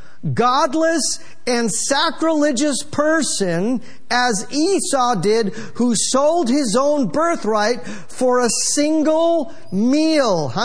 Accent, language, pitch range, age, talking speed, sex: American, English, 195-265 Hz, 50-69, 95 wpm, male